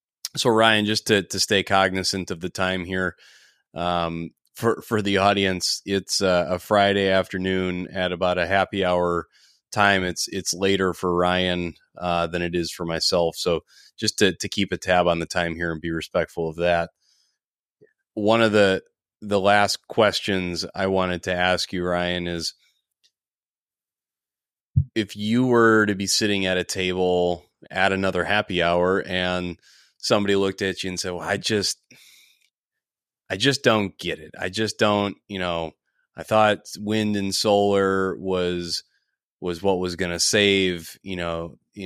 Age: 30-49